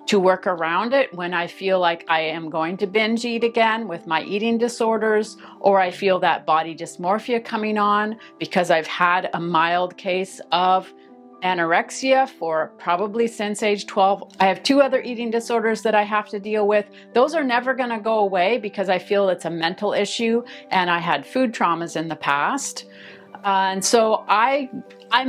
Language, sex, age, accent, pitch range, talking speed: English, female, 40-59, American, 180-230 Hz, 185 wpm